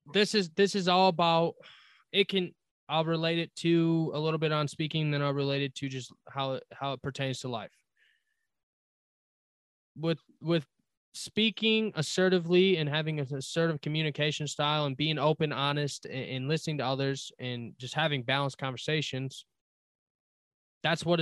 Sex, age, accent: male, 20-39, American